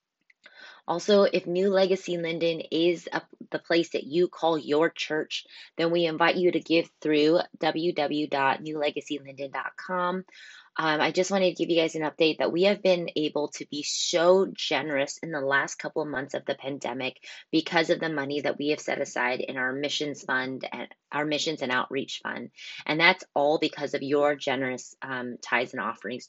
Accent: American